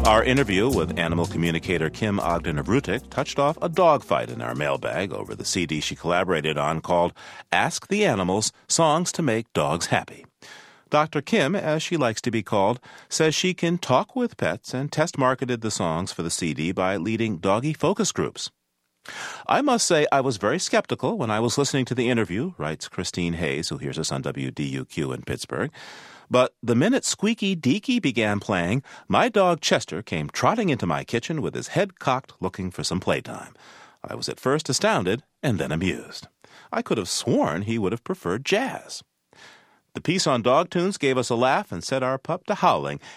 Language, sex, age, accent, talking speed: English, male, 40-59, American, 190 wpm